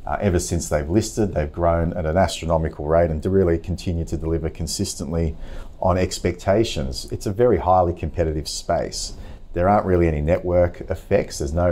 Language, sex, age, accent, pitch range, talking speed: English, male, 30-49, Australian, 80-90 Hz, 175 wpm